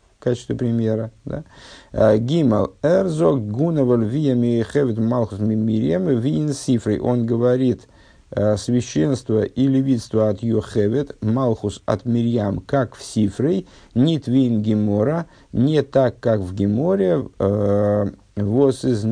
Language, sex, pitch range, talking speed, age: Russian, male, 105-130 Hz, 110 wpm, 50-69